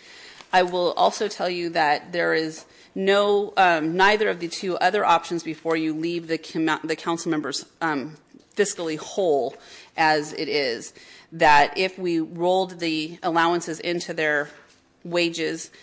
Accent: American